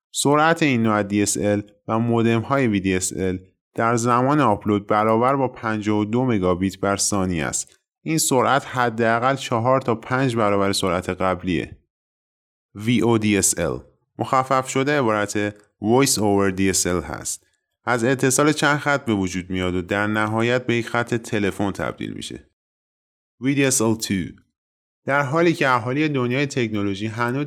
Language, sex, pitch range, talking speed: Persian, male, 100-130 Hz, 140 wpm